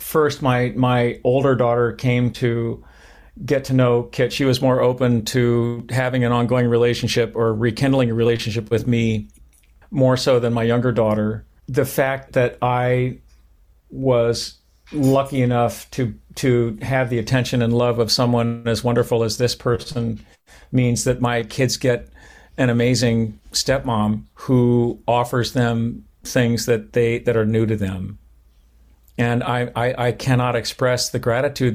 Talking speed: 150 wpm